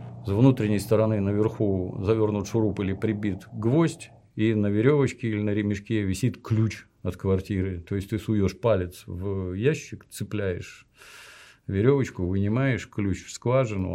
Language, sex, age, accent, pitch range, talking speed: Russian, male, 50-69, native, 95-115 Hz, 140 wpm